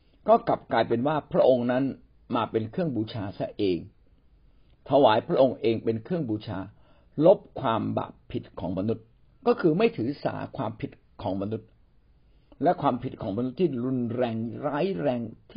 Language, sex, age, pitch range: Thai, male, 60-79, 110-150 Hz